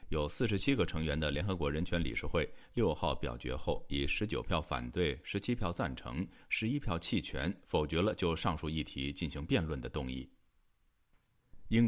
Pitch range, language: 75-100 Hz, Chinese